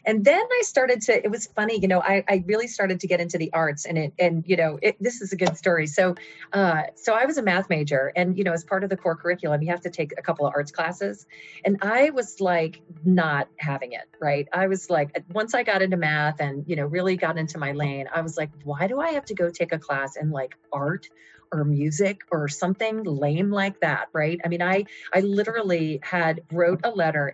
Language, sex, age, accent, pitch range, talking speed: English, female, 40-59, American, 155-190 Hz, 245 wpm